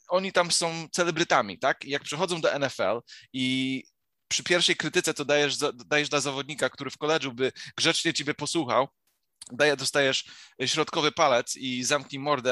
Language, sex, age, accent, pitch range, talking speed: Polish, male, 20-39, native, 125-155 Hz, 160 wpm